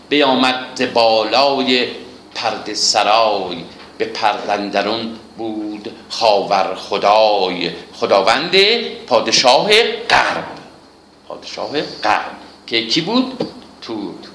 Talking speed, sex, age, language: 75 wpm, male, 50-69, Persian